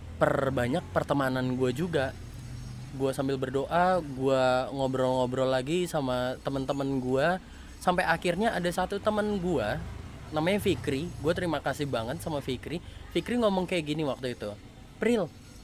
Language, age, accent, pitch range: Indonesian, 20-39, native, 130-180 Hz